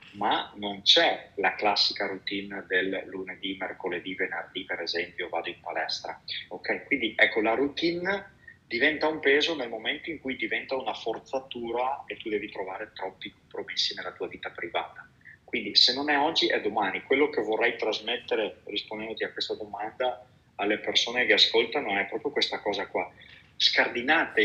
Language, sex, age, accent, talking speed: Italian, male, 30-49, native, 160 wpm